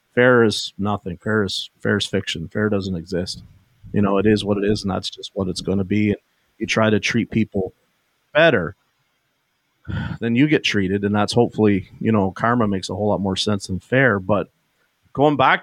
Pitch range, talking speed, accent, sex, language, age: 100-125 Hz, 200 wpm, American, male, English, 40-59